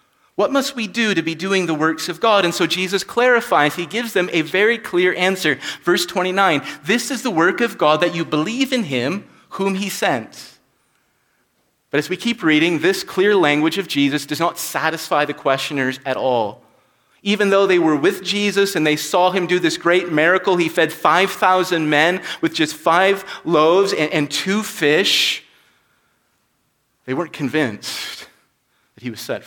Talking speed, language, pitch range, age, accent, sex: 180 wpm, English, 160-205 Hz, 30-49, American, male